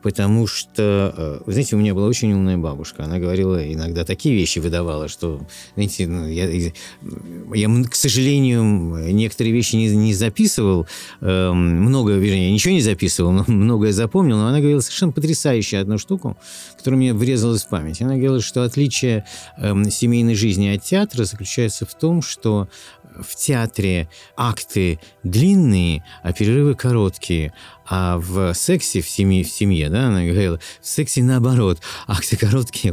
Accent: native